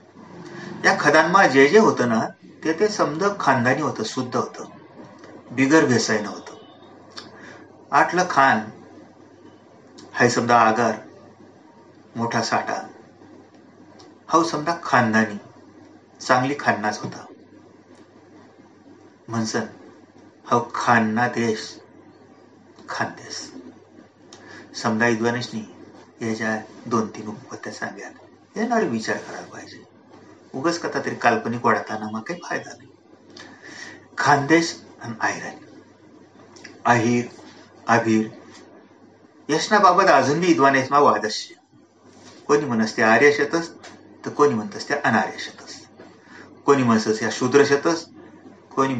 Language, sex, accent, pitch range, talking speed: Marathi, male, native, 110-160 Hz, 80 wpm